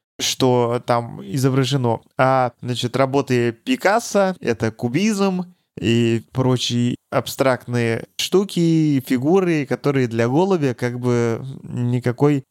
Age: 20-39